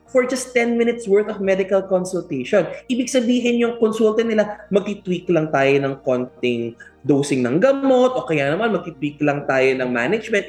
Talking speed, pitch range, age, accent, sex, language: 165 wpm, 175-235 Hz, 20-39, native, male, Filipino